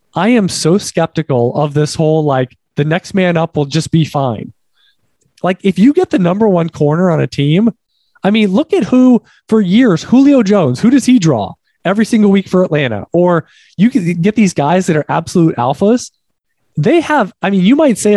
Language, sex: English, male